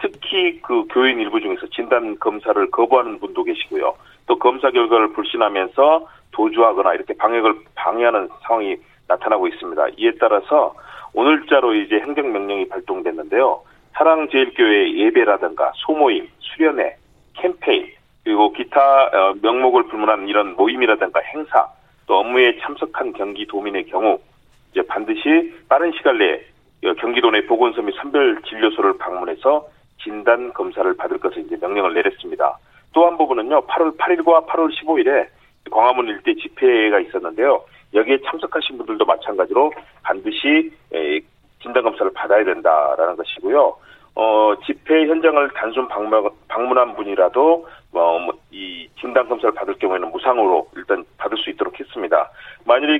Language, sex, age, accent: Korean, male, 40-59, native